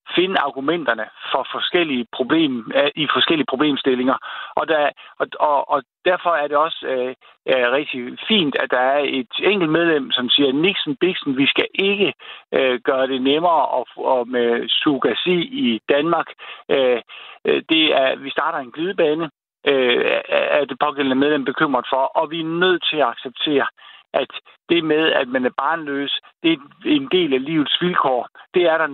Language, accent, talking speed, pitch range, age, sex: Danish, native, 165 wpm, 135-200 Hz, 50-69, male